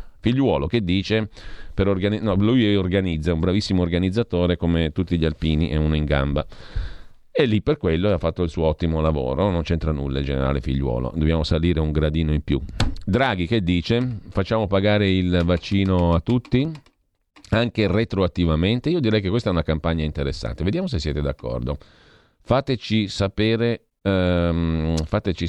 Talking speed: 160 wpm